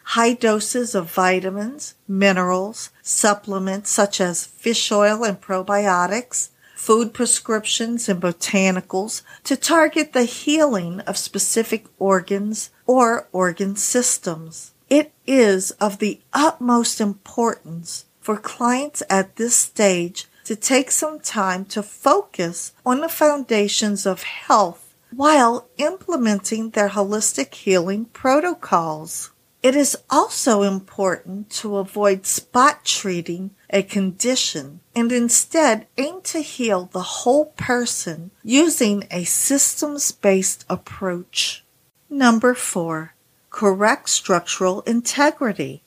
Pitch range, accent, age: 190-245 Hz, American, 50-69